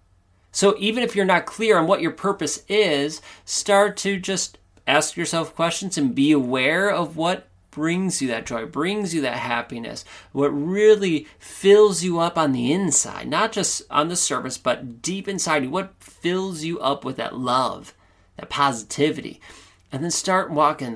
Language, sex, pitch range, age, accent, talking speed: English, male, 110-170 Hz, 30-49, American, 170 wpm